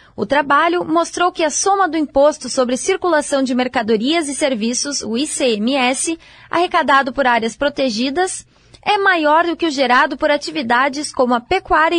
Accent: Brazilian